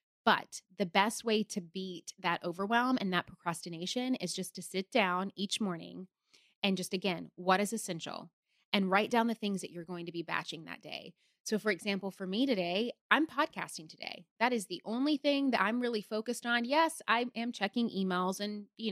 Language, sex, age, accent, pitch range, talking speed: English, female, 20-39, American, 180-240 Hz, 200 wpm